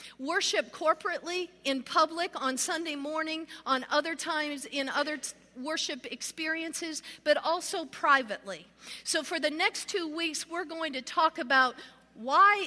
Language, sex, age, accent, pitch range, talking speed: English, female, 50-69, American, 260-330 Hz, 135 wpm